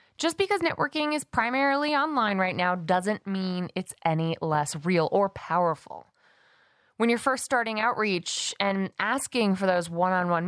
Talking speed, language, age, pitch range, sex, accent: 150 wpm, English, 20-39, 180-245 Hz, female, American